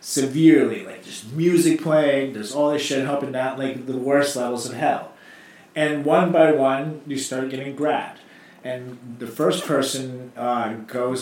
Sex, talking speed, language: male, 165 wpm, English